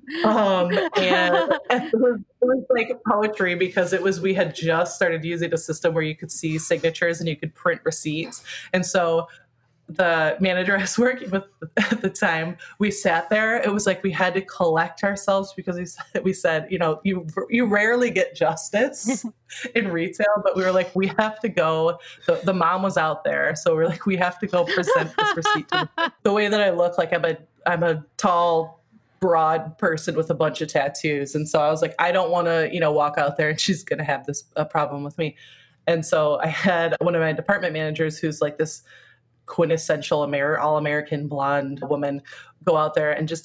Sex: female